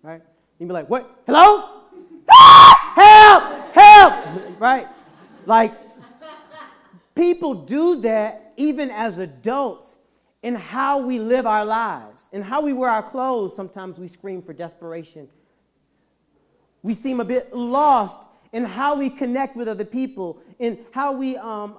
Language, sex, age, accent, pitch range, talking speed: English, male, 40-59, American, 210-285 Hz, 135 wpm